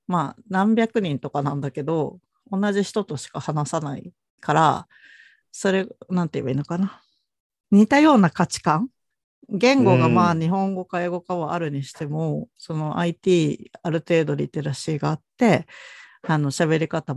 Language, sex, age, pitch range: Japanese, female, 50-69, 150-215 Hz